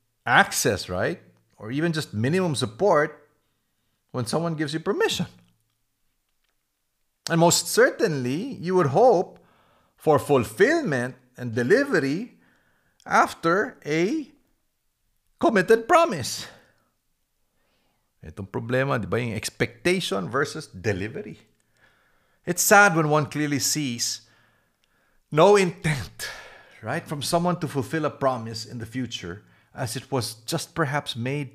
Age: 50-69